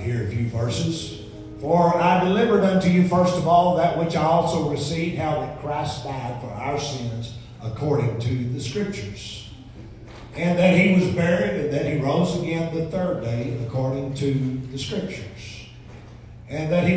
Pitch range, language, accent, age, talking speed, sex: 120-170 Hz, English, American, 50-69, 170 wpm, male